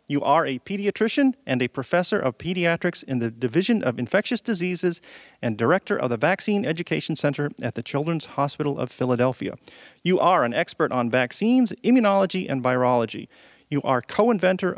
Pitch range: 125-185 Hz